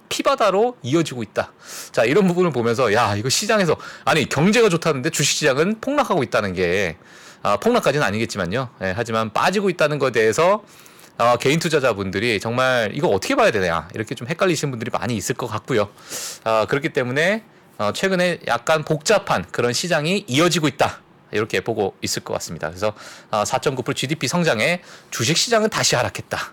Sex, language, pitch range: male, Korean, 130-185 Hz